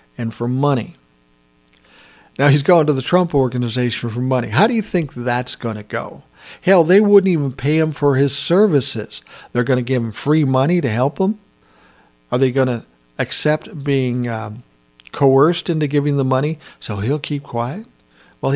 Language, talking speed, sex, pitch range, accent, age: English, 180 wpm, male, 115-145 Hz, American, 50-69